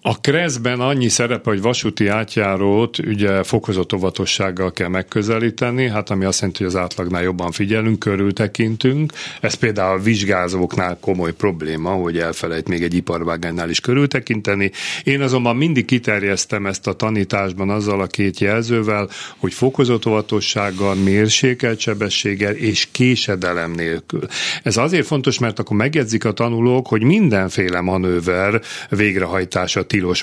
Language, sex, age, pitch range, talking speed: Hungarian, male, 40-59, 95-120 Hz, 130 wpm